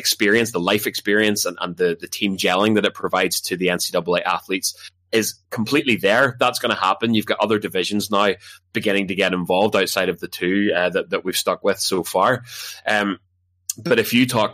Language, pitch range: English, 95-110 Hz